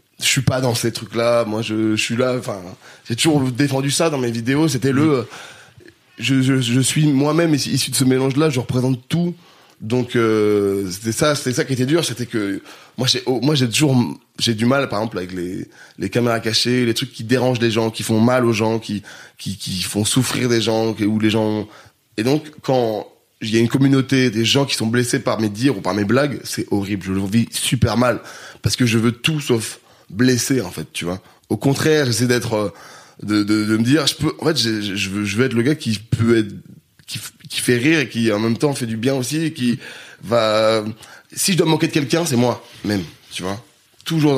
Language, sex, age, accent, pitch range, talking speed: French, male, 20-39, French, 110-135 Hz, 230 wpm